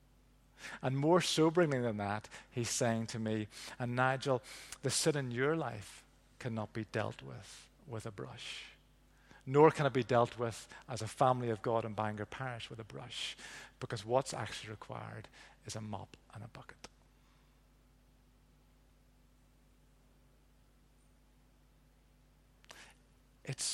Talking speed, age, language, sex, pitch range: 130 wpm, 50-69, English, male, 115-135 Hz